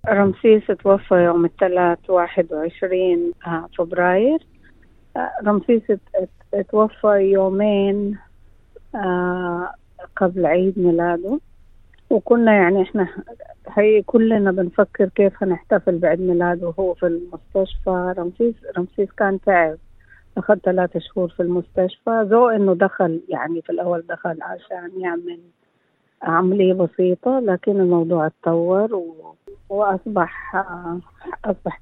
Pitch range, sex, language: 175-205 Hz, female, Arabic